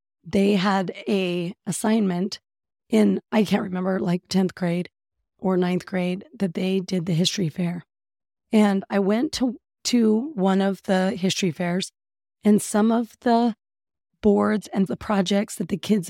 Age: 30-49